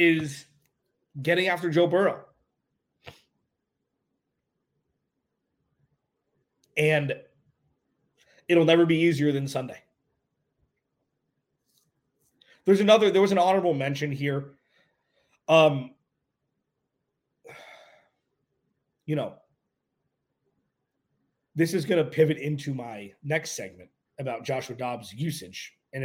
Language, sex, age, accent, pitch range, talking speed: English, male, 30-49, American, 130-165 Hz, 85 wpm